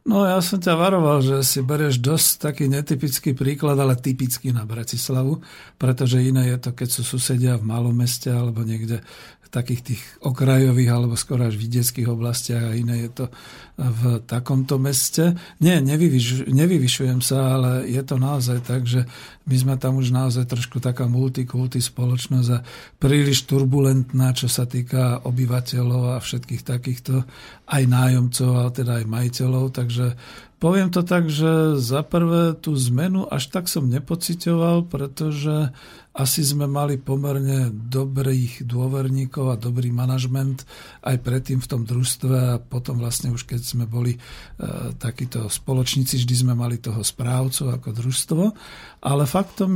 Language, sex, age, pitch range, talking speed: Slovak, male, 50-69, 125-145 Hz, 145 wpm